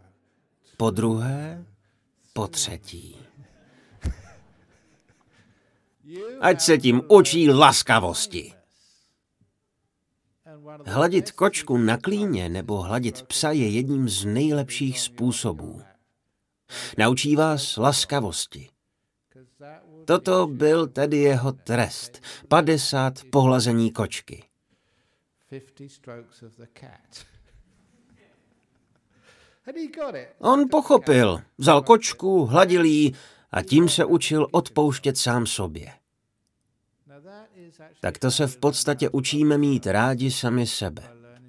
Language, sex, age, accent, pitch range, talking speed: Czech, male, 50-69, native, 110-145 Hz, 80 wpm